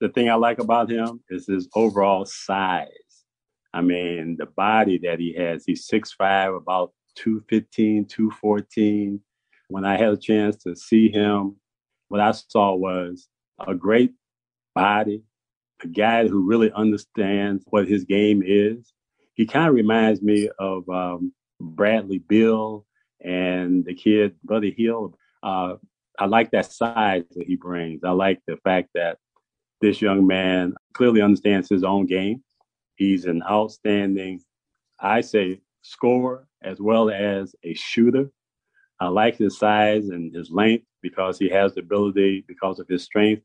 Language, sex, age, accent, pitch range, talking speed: English, male, 40-59, American, 95-110 Hz, 150 wpm